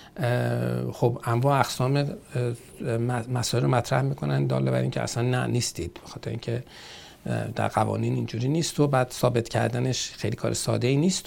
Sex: male